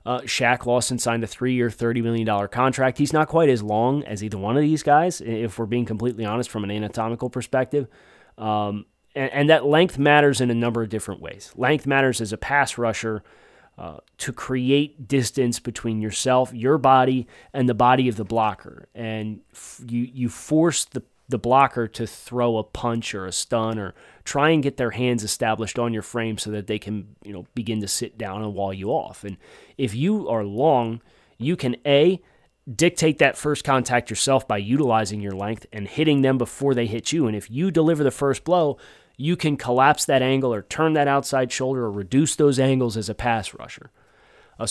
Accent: American